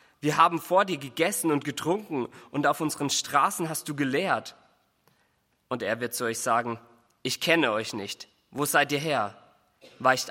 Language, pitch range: German, 115-145 Hz